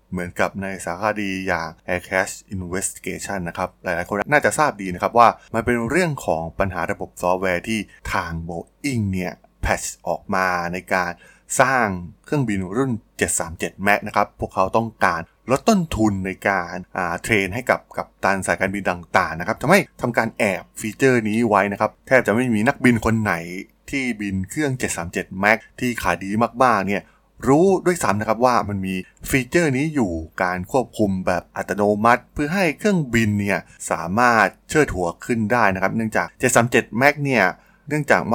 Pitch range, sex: 95-120 Hz, male